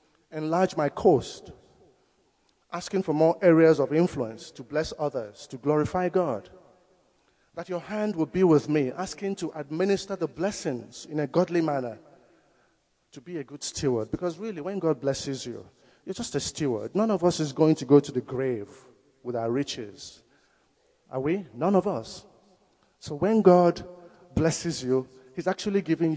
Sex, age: male, 50-69